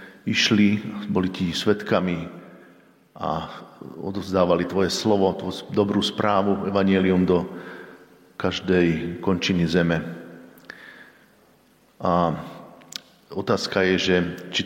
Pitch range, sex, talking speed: 85-95 Hz, male, 85 wpm